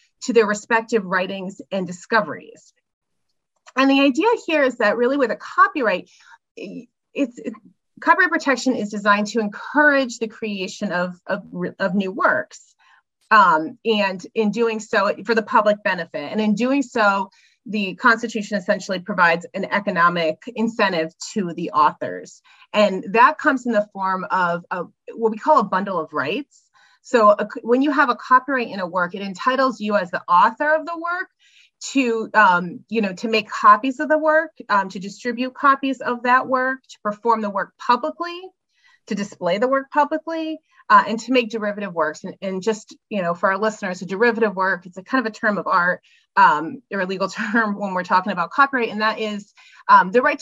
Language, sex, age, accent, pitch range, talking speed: English, female, 30-49, American, 200-270 Hz, 185 wpm